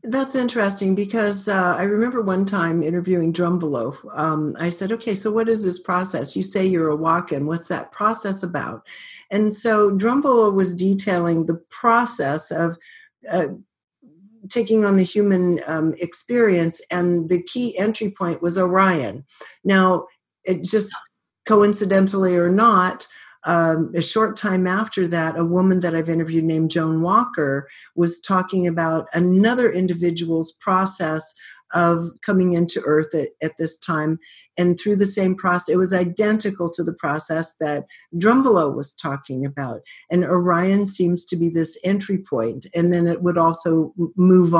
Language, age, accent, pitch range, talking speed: English, 50-69, American, 160-195 Hz, 155 wpm